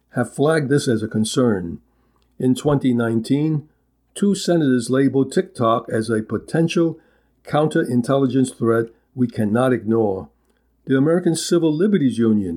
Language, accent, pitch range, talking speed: English, American, 115-145 Hz, 120 wpm